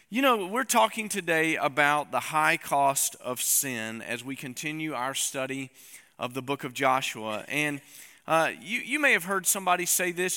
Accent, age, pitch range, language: American, 40-59, 135-180 Hz, English